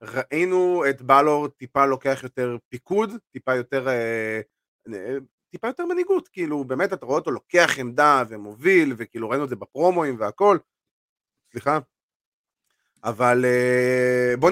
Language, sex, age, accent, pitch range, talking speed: Hebrew, male, 30-49, native, 115-180 Hz, 110 wpm